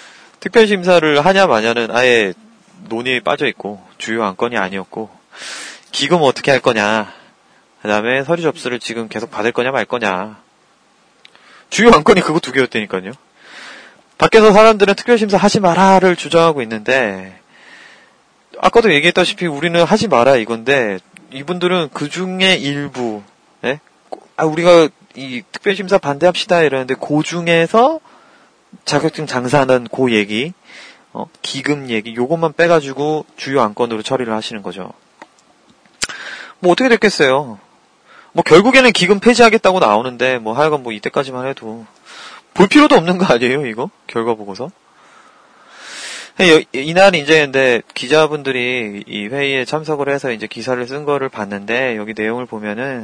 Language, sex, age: Korean, male, 30-49